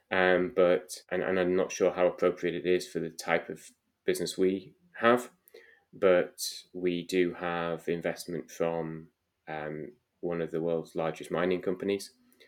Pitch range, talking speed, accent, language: 80-100 Hz, 155 wpm, British, English